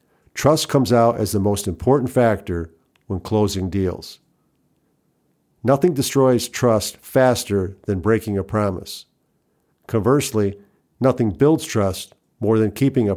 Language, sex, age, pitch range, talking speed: English, male, 50-69, 100-125 Hz, 125 wpm